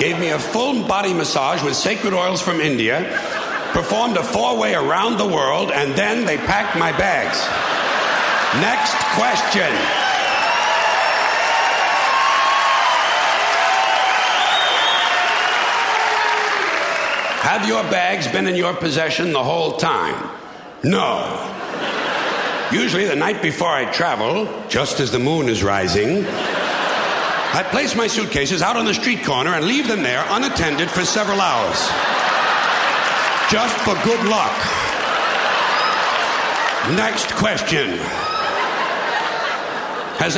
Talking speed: 105 wpm